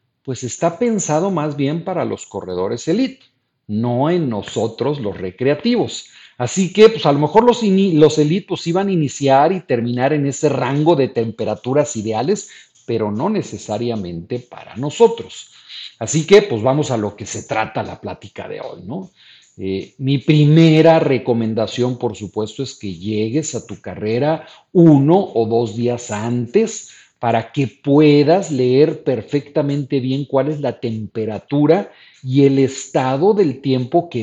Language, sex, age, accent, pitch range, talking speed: Spanish, male, 50-69, Mexican, 120-185 Hz, 155 wpm